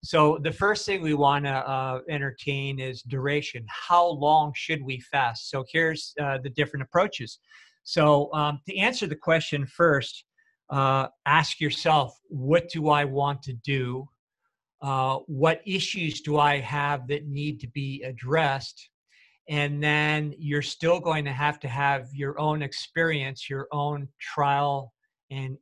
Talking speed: 150 wpm